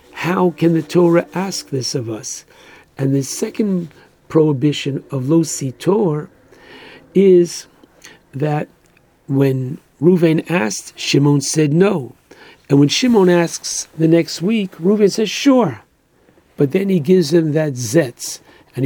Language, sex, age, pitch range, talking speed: English, male, 60-79, 145-185 Hz, 125 wpm